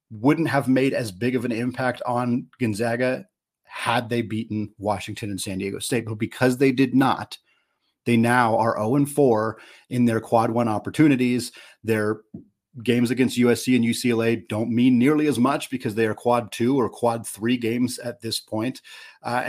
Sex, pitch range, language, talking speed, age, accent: male, 110-135 Hz, English, 170 wpm, 30-49, American